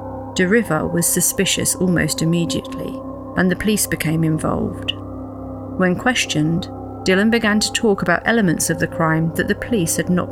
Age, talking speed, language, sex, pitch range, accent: 40-59, 155 wpm, English, female, 165-240 Hz, British